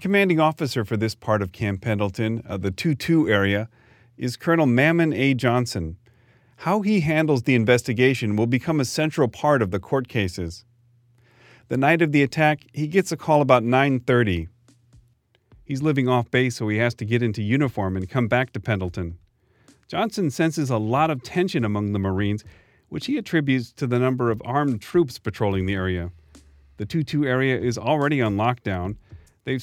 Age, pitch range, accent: 40-59, 105-140 Hz, American